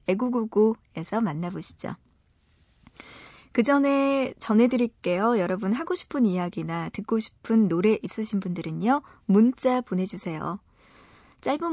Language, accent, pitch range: Korean, native, 190-245 Hz